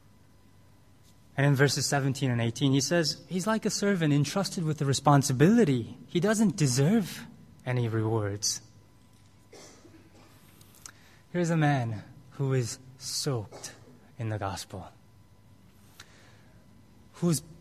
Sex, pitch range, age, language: male, 105-140 Hz, 20-39, English